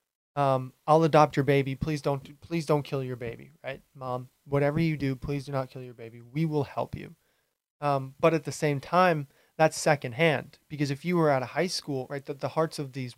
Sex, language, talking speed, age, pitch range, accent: male, English, 225 wpm, 20-39, 130-155 Hz, American